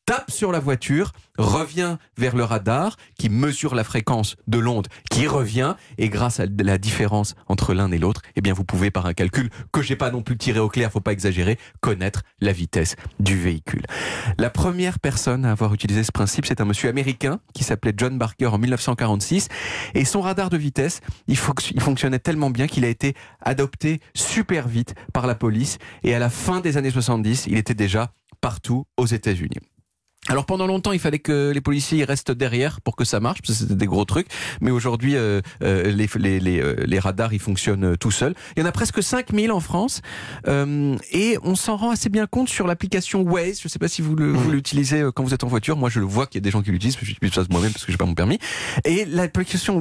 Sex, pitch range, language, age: male, 105-155 Hz, French, 30-49